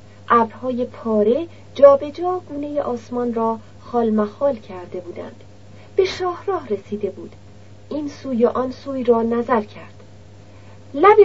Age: 40-59